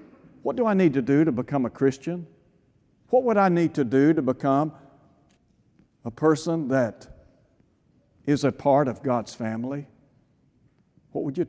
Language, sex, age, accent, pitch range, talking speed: English, male, 60-79, American, 135-175 Hz, 155 wpm